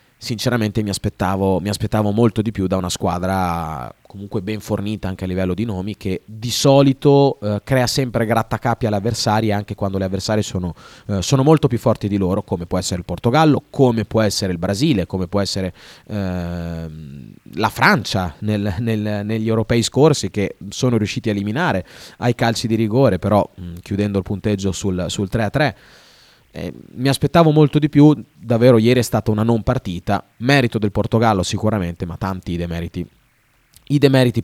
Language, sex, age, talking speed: Italian, male, 30-49, 165 wpm